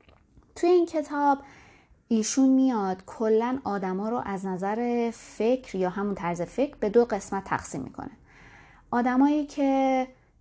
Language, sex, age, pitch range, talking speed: Persian, female, 30-49, 195-265 Hz, 125 wpm